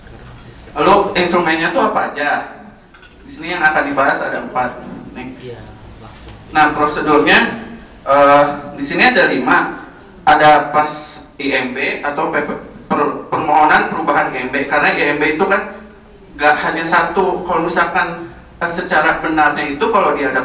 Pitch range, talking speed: 135-175 Hz, 125 wpm